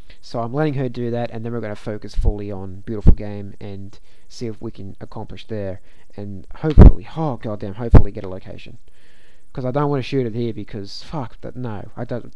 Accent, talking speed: Australian, 220 wpm